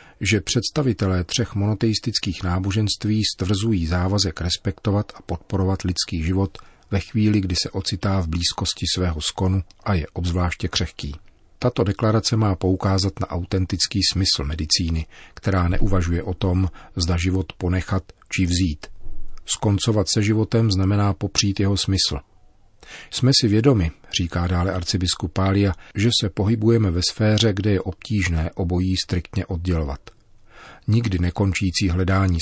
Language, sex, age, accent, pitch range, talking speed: Czech, male, 40-59, native, 90-105 Hz, 130 wpm